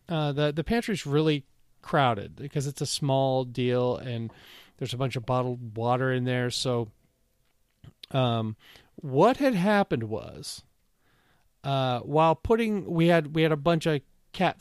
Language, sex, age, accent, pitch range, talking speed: English, male, 40-59, American, 125-155 Hz, 150 wpm